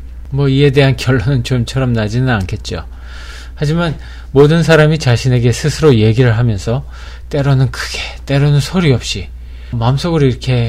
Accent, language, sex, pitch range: native, Korean, male, 100-145 Hz